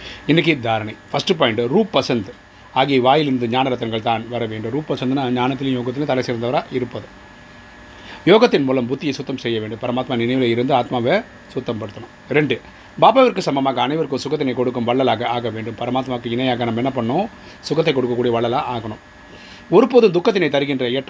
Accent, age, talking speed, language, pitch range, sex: native, 30-49, 140 wpm, Tamil, 115-135 Hz, male